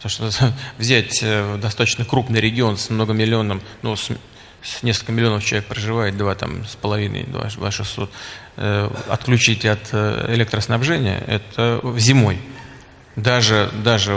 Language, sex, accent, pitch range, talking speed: Russian, male, native, 105-125 Hz, 125 wpm